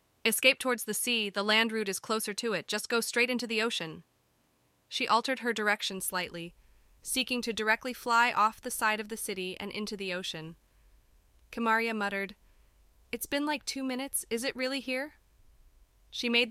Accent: American